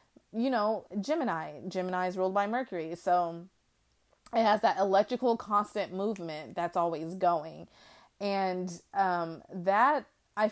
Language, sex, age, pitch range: English, female, 30-49, 175-220 Hz